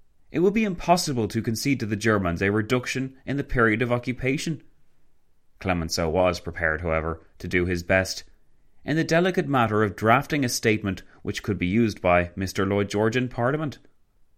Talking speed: 175 wpm